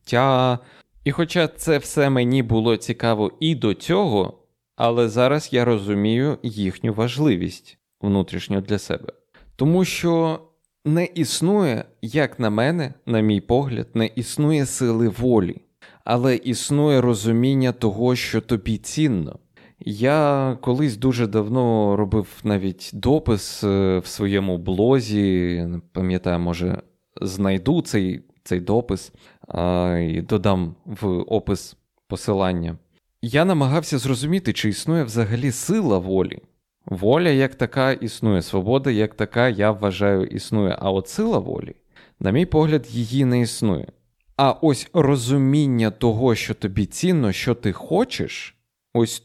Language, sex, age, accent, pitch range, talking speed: Ukrainian, male, 20-39, native, 100-140 Hz, 120 wpm